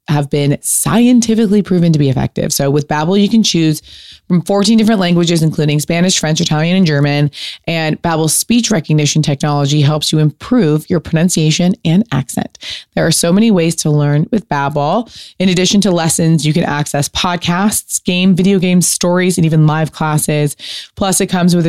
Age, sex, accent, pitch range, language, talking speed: 20-39, female, American, 150-190 Hz, English, 175 wpm